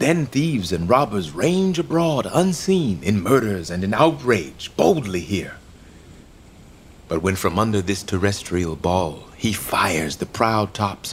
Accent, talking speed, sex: American, 140 wpm, male